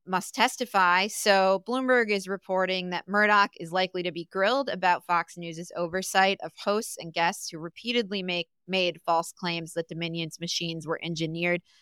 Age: 20-39